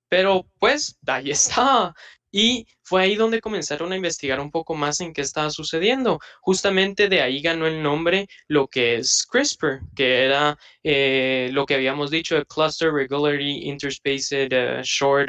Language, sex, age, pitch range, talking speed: Spanish, male, 20-39, 135-170 Hz, 160 wpm